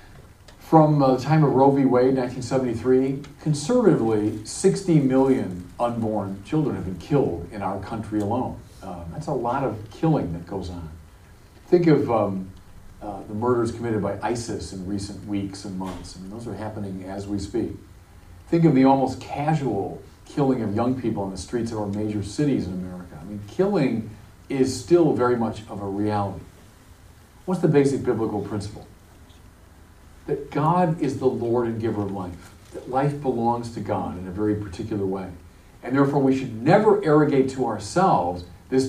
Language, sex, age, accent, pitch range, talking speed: English, male, 40-59, American, 95-130 Hz, 175 wpm